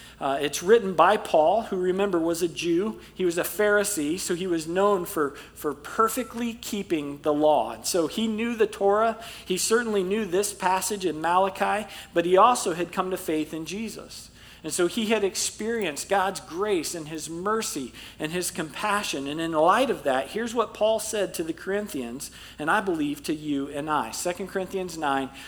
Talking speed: 190 wpm